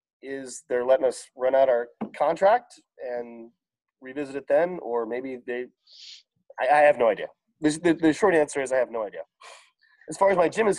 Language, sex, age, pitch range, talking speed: English, male, 30-49, 125-170 Hz, 195 wpm